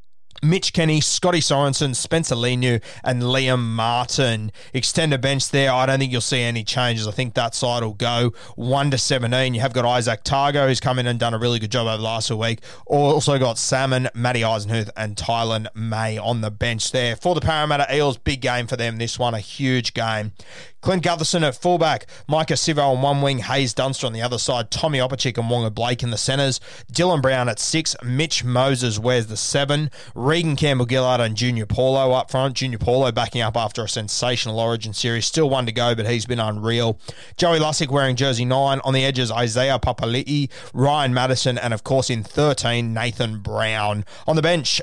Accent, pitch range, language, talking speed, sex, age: Australian, 115-135 Hz, English, 200 wpm, male, 20-39